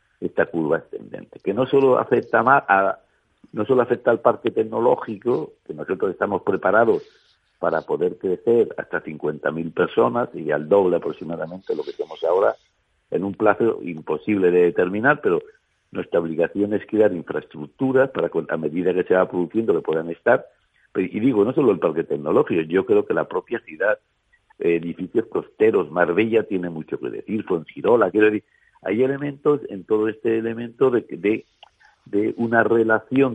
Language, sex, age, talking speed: Spanish, male, 60-79, 160 wpm